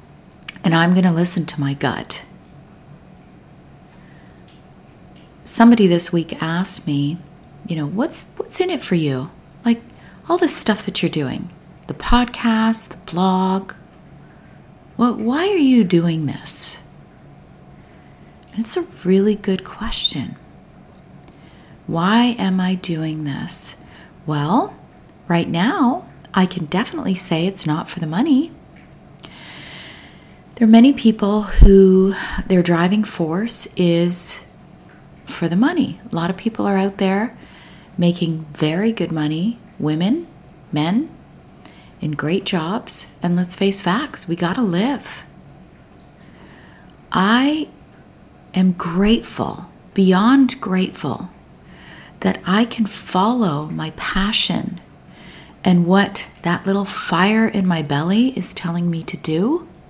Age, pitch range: 50-69, 170-225 Hz